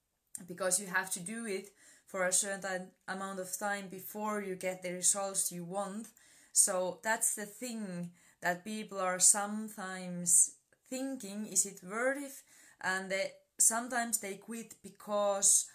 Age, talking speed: 20-39, 150 wpm